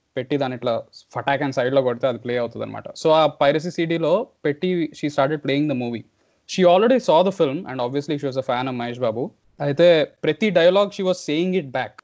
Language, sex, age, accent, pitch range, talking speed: Telugu, male, 20-39, native, 130-155 Hz, 220 wpm